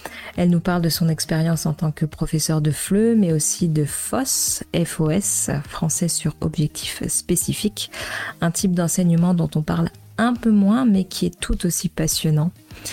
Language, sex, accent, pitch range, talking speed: French, female, French, 160-185 Hz, 165 wpm